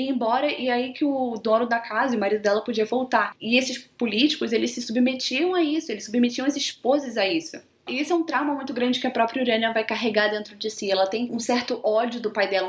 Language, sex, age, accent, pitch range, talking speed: Portuguese, female, 10-29, Brazilian, 215-250 Hz, 240 wpm